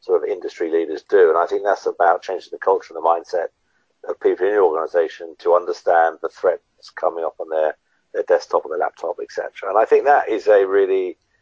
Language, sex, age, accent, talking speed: English, male, 50-69, British, 220 wpm